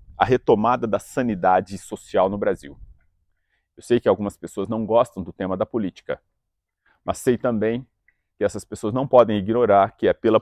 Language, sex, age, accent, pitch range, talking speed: English, male, 40-59, Brazilian, 90-120 Hz, 175 wpm